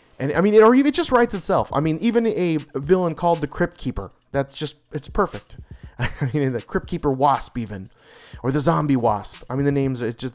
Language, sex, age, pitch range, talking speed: English, male, 30-49, 120-170 Hz, 225 wpm